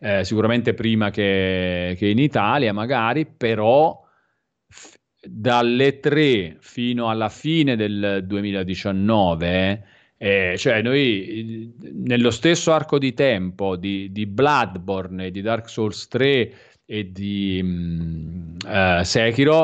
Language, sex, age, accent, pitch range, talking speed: Italian, male, 40-59, native, 100-120 Hz, 120 wpm